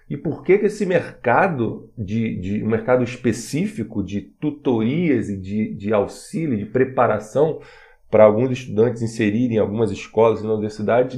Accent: Brazilian